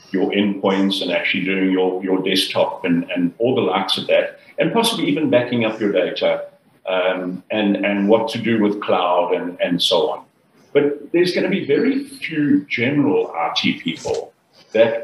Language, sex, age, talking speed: English, male, 50-69, 180 wpm